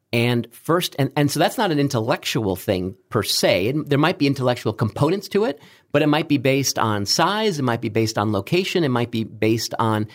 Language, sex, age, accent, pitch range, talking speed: English, male, 50-69, American, 110-140 Hz, 225 wpm